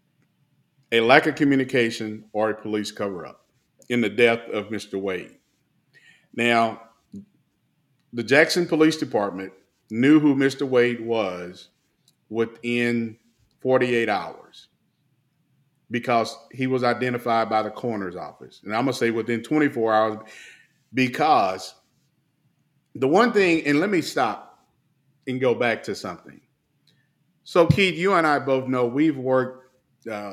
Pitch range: 115-140 Hz